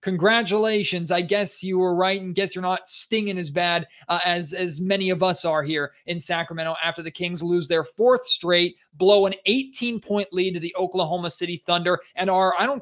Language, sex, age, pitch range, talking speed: English, male, 20-39, 180-235 Hz, 200 wpm